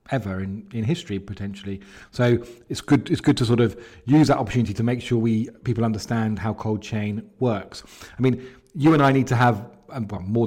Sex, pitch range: male, 100-125 Hz